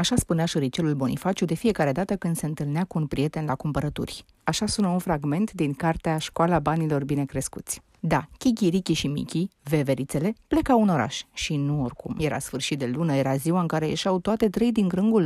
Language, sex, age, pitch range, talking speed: Romanian, female, 30-49, 150-220 Hz, 195 wpm